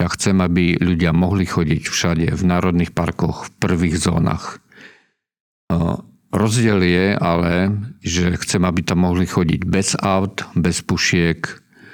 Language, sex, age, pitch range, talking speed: Czech, male, 50-69, 90-95 Hz, 130 wpm